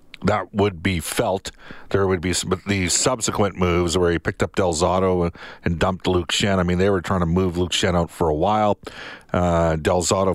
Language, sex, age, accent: English, male, 50-69, American